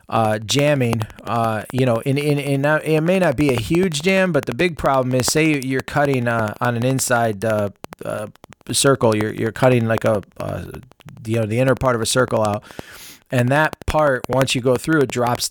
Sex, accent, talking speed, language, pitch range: male, American, 215 wpm, English, 110-140 Hz